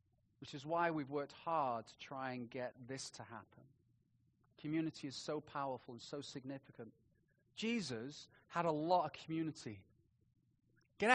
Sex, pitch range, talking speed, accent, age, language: male, 135-225 Hz, 145 wpm, British, 30-49, English